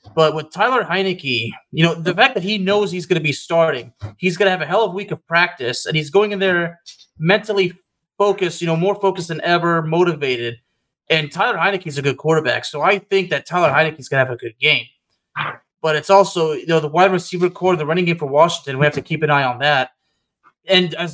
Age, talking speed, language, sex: 30-49, 240 wpm, English, male